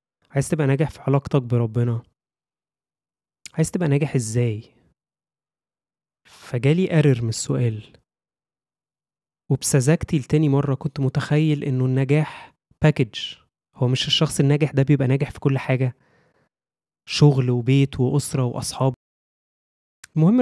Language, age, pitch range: Arabic, 20-39, 125-155 Hz